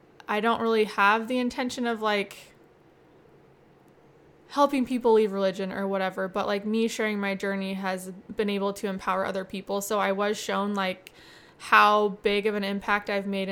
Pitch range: 200-230 Hz